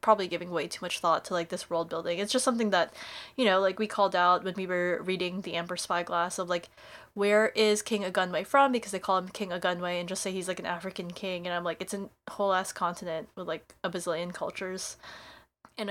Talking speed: 235 wpm